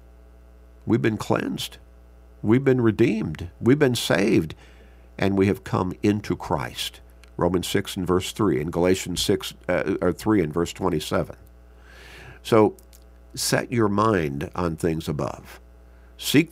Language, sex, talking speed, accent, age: English, male, 135 wpm, American, 50-69